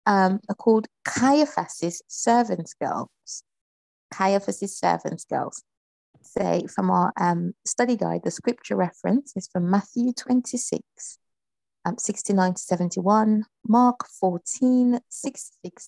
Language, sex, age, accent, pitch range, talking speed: English, female, 30-49, British, 175-225 Hz, 110 wpm